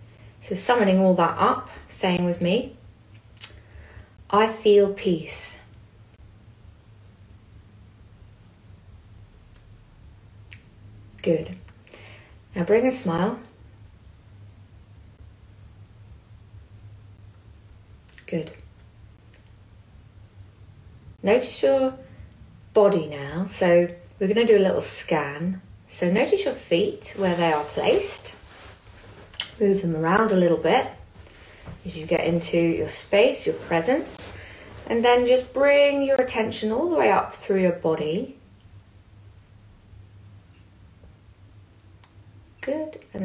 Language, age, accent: English, 30-49, British